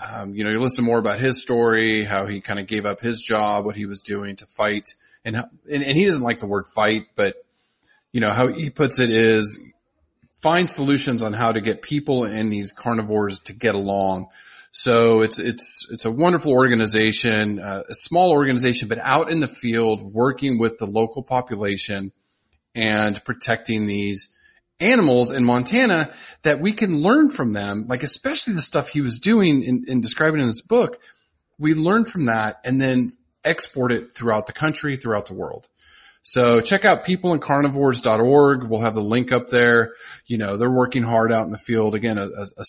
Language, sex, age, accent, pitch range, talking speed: English, male, 30-49, American, 105-140 Hz, 190 wpm